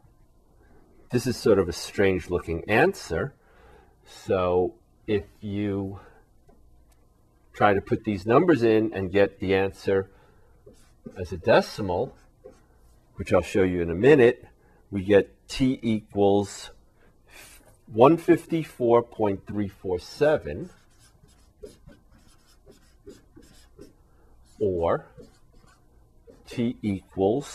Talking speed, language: 85 wpm, English